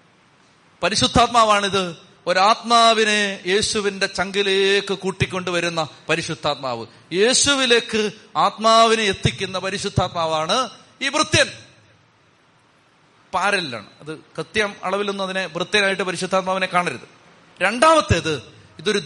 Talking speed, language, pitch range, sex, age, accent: 70 wpm, Malayalam, 185-270 Hz, male, 30-49, native